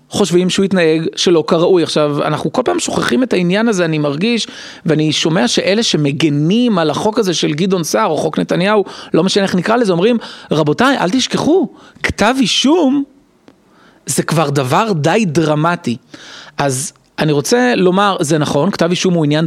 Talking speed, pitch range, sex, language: 165 wpm, 160-220 Hz, male, Hebrew